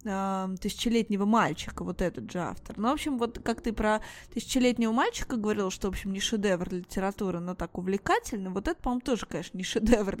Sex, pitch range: female, 190-230 Hz